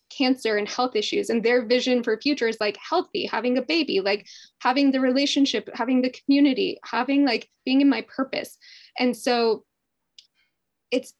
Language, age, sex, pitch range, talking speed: English, 10-29, female, 225-265 Hz, 165 wpm